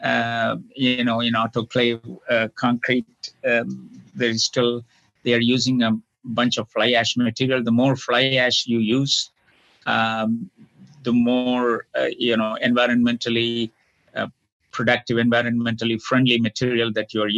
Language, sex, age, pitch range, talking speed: English, male, 50-69, 115-125 Hz, 130 wpm